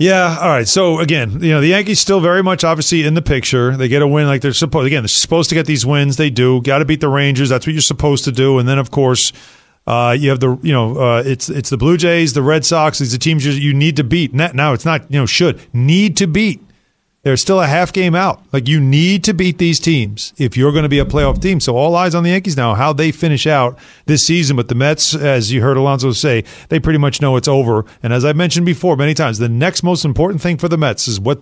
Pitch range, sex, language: 135-170 Hz, male, English